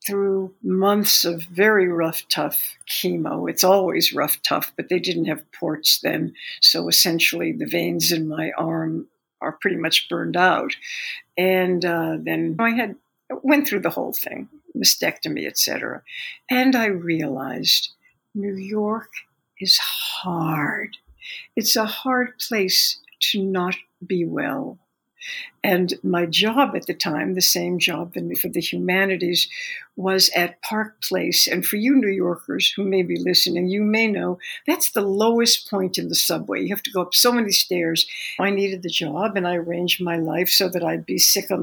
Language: English